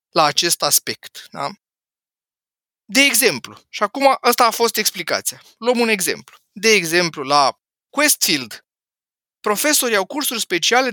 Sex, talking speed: male, 125 wpm